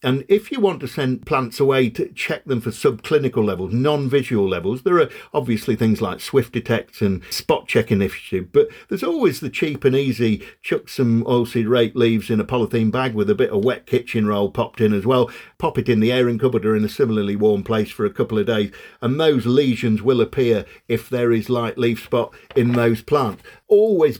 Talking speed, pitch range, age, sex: 215 wpm, 110-140 Hz, 50-69, male